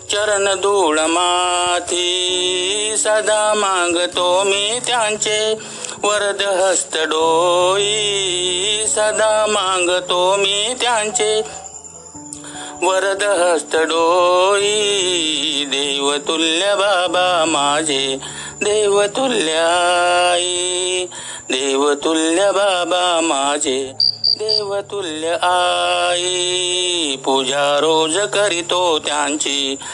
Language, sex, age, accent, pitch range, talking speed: Marathi, male, 60-79, native, 165-205 Hz, 55 wpm